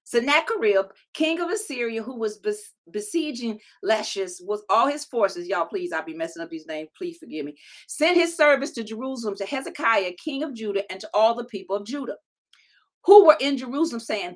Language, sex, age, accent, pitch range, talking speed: English, female, 40-59, American, 230-325 Hz, 190 wpm